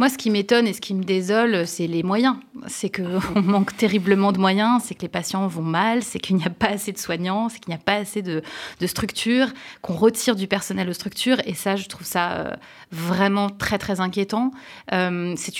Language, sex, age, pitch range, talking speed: French, female, 30-49, 185-235 Hz, 220 wpm